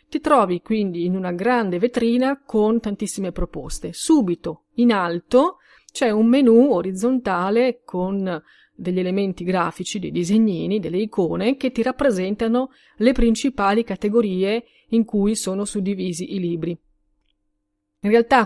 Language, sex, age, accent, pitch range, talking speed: Italian, female, 30-49, native, 185-240 Hz, 125 wpm